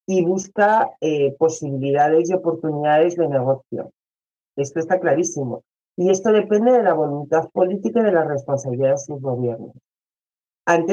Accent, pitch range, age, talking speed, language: Spanish, 135-175 Hz, 40-59, 145 wpm, Spanish